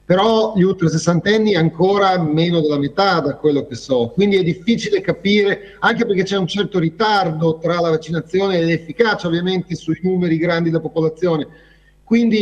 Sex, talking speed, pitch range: male, 165 wpm, 155-195 Hz